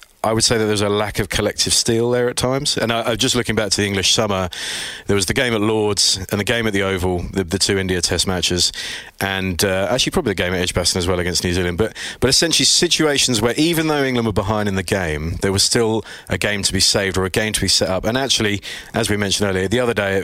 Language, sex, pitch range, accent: English, male, 90-115 Hz, British